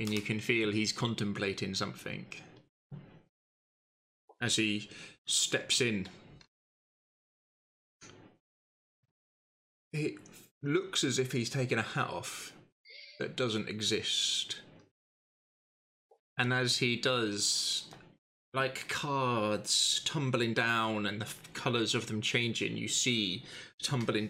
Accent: British